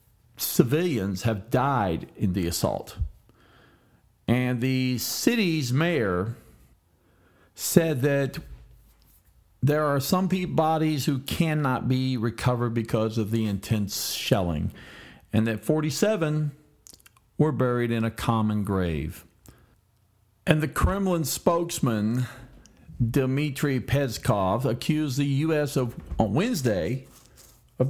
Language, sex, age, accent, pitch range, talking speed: English, male, 50-69, American, 110-150 Hz, 100 wpm